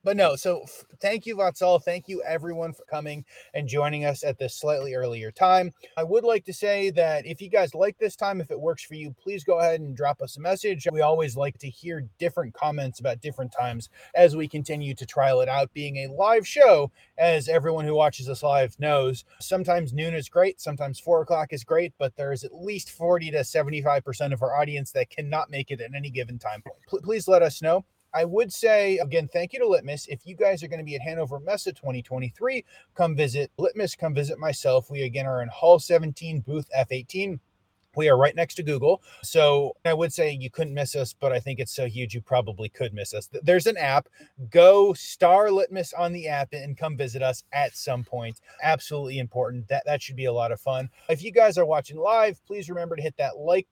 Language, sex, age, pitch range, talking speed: English, male, 30-49, 135-175 Hz, 225 wpm